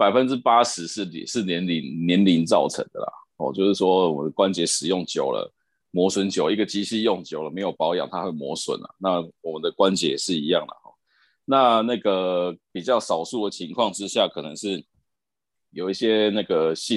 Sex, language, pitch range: male, Chinese, 90-110 Hz